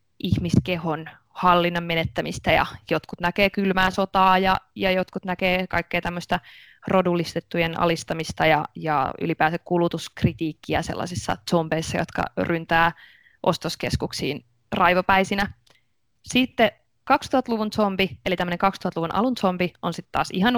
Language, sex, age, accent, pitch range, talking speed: Finnish, female, 20-39, native, 170-195 Hz, 110 wpm